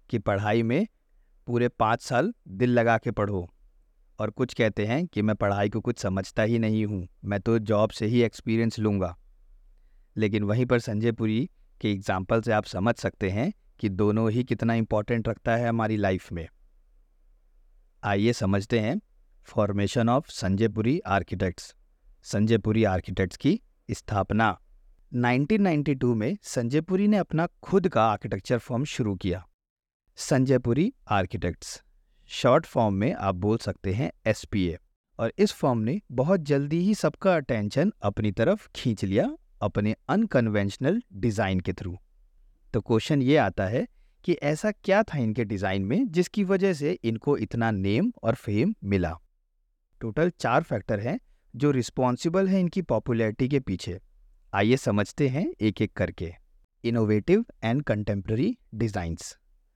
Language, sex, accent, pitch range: Hindi, male, native, 100-130 Hz